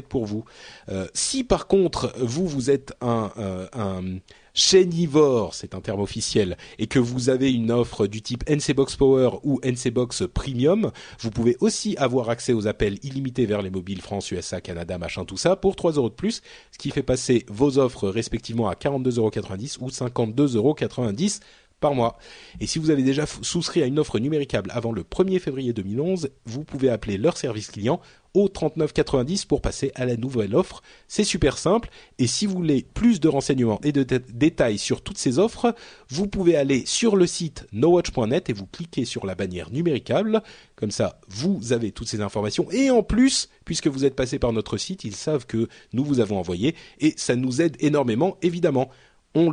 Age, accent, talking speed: 30-49, French, 190 wpm